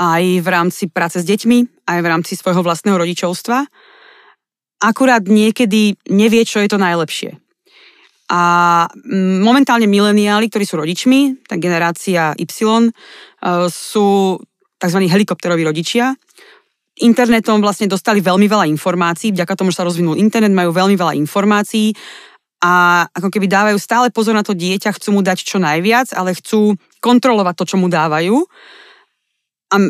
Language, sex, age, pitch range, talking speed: Slovak, female, 20-39, 175-220 Hz, 140 wpm